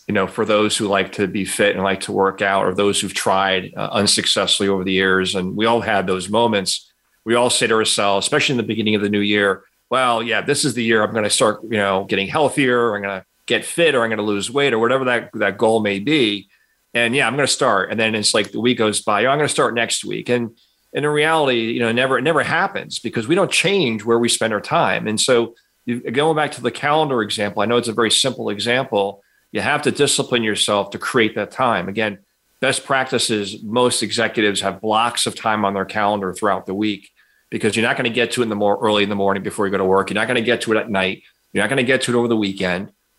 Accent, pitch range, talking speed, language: American, 100-120 Hz, 270 wpm, English